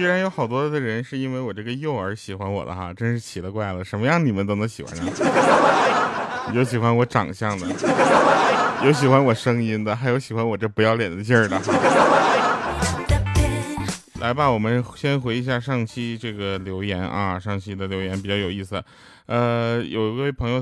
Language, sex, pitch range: Chinese, male, 100-140 Hz